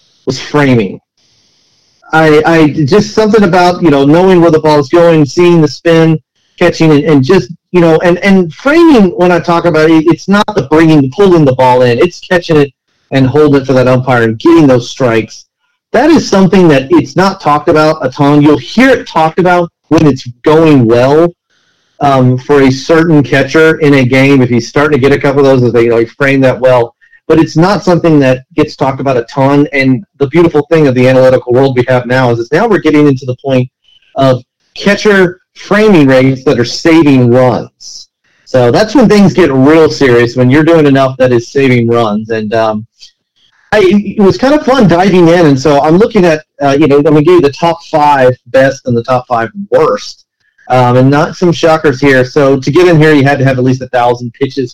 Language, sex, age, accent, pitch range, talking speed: English, male, 40-59, American, 130-170 Hz, 215 wpm